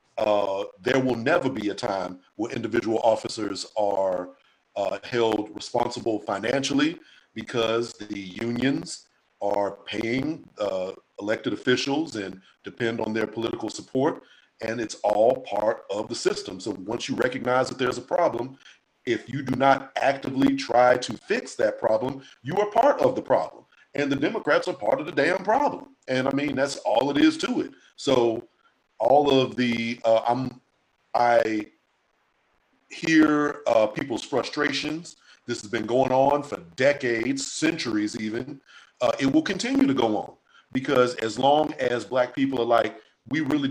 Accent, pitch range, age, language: American, 115-145 Hz, 50-69, English